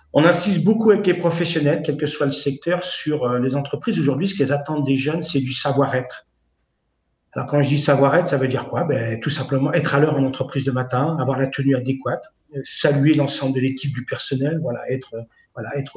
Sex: male